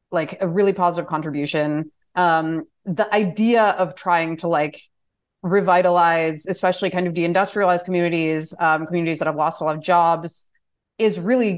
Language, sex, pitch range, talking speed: English, female, 160-185 Hz, 155 wpm